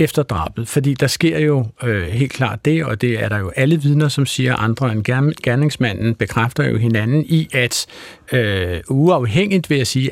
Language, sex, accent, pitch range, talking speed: Danish, male, native, 115-150 Hz, 165 wpm